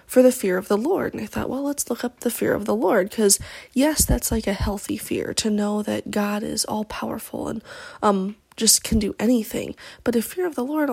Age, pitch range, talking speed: 20-39, 220-260 Hz, 240 wpm